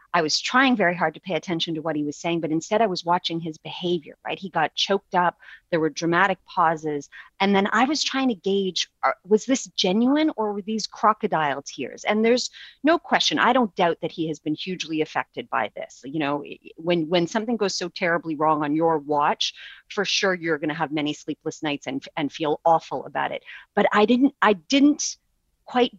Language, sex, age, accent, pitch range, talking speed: English, female, 30-49, American, 160-220 Hz, 210 wpm